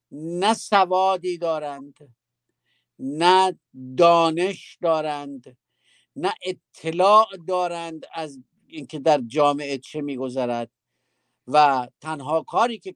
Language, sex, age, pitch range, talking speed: Persian, male, 50-69, 130-180 Hz, 90 wpm